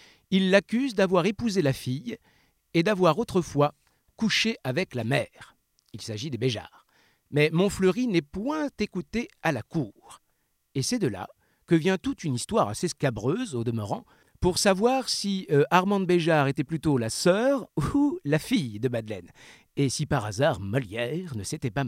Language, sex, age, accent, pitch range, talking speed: French, male, 50-69, French, 130-185 Hz, 170 wpm